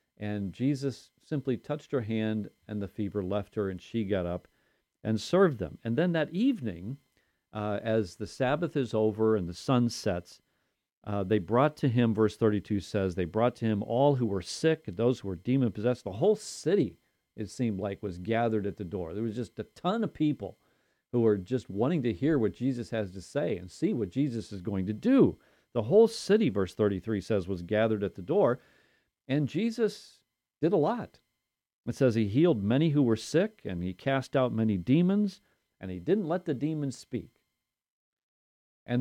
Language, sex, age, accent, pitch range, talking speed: English, male, 40-59, American, 100-140 Hz, 195 wpm